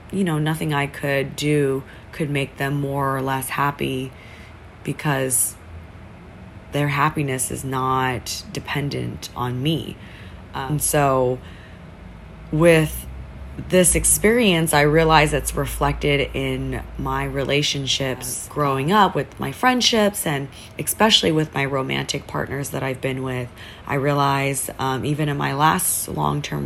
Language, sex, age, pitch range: English, female, 20-39, 120-150 Hz